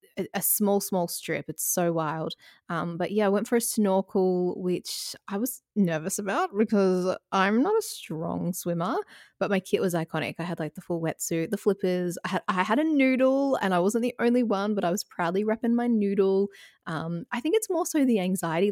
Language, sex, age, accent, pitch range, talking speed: English, female, 20-39, Australian, 170-225 Hz, 210 wpm